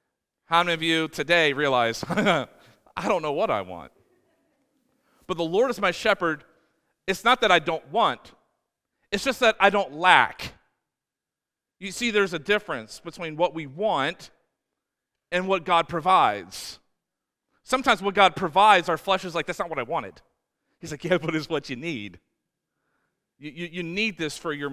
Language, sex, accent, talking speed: English, male, American, 170 wpm